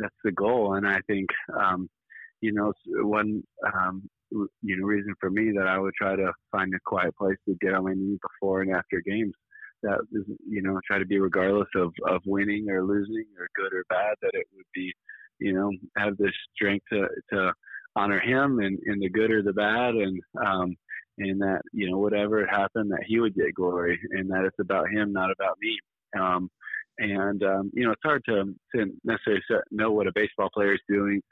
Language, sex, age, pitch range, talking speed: English, male, 30-49, 95-110 Hz, 205 wpm